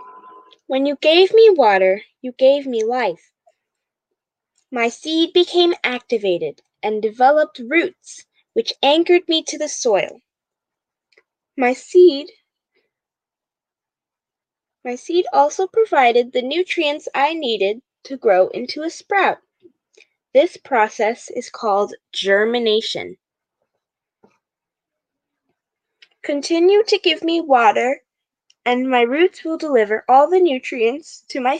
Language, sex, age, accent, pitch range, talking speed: English, female, 10-29, American, 220-355 Hz, 110 wpm